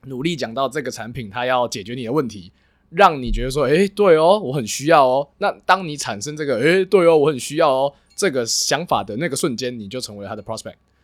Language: Chinese